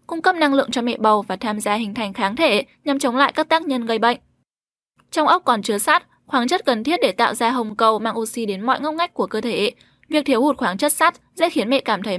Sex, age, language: female, 10-29, Vietnamese